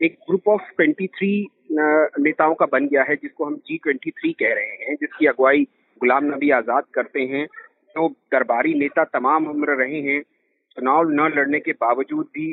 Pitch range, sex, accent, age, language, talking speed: 155-250 Hz, male, native, 40-59, Hindi, 170 wpm